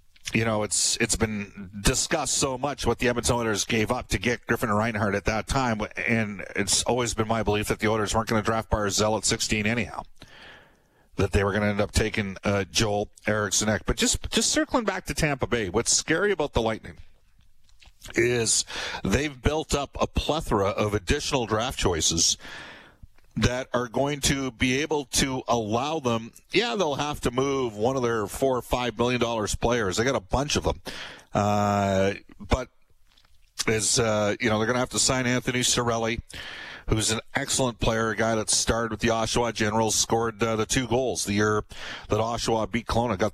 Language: English